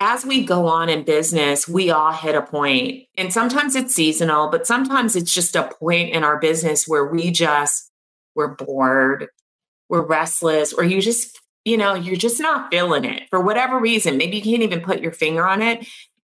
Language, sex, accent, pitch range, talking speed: English, female, American, 160-215 Hz, 195 wpm